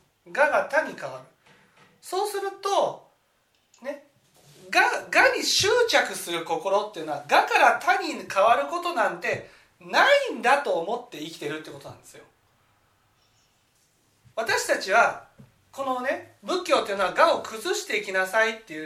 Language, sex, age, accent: Japanese, male, 40-59, native